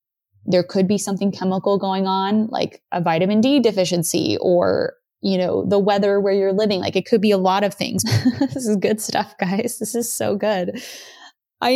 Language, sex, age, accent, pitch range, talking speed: English, female, 20-39, American, 180-210 Hz, 195 wpm